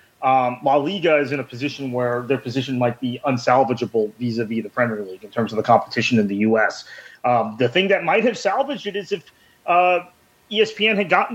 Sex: male